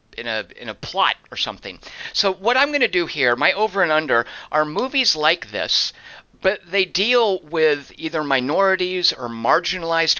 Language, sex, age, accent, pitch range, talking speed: English, male, 50-69, American, 120-170 Hz, 175 wpm